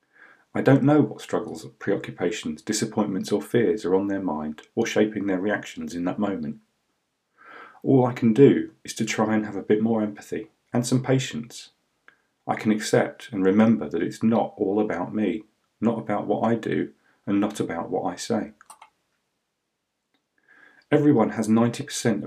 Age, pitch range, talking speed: 40-59, 100-120 Hz, 165 wpm